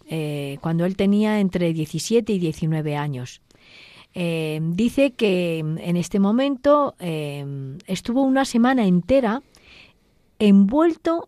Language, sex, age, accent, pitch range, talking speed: Spanish, female, 40-59, Spanish, 175-260 Hz, 110 wpm